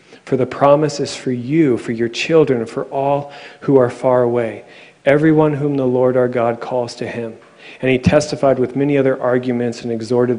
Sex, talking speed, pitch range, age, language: male, 195 wpm, 120-145 Hz, 40-59, English